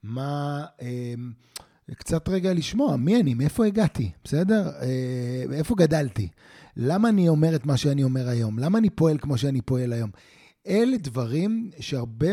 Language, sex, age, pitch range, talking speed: Hebrew, male, 30-49, 130-165 Hz, 140 wpm